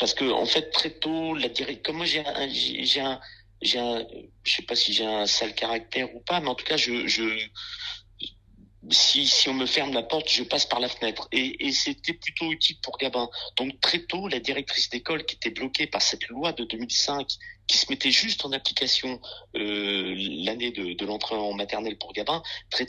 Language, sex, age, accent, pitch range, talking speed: French, male, 50-69, French, 110-145 Hz, 210 wpm